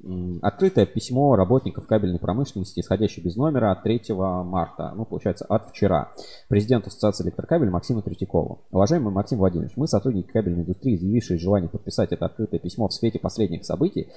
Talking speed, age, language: 155 wpm, 20-39, Russian